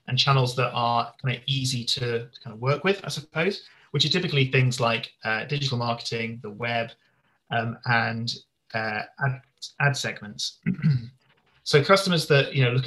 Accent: British